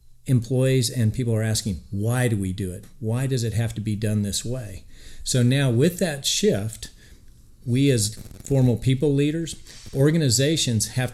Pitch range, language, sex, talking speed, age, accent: 105-125 Hz, English, male, 165 wpm, 50-69, American